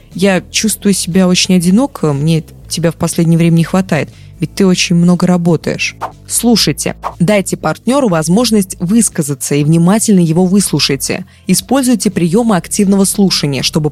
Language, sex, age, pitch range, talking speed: Russian, female, 20-39, 165-210 Hz, 135 wpm